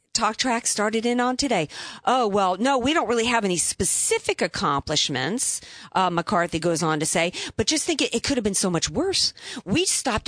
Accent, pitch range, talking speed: American, 170-250 Hz, 205 wpm